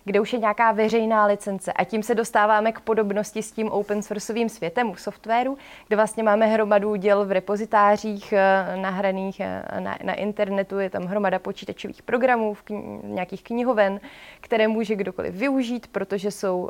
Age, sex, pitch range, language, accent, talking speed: 20-39, female, 190-220 Hz, Czech, native, 160 wpm